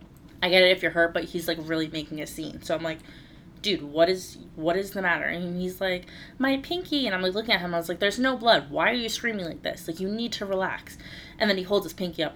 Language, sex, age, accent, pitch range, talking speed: English, female, 20-39, American, 160-200 Hz, 280 wpm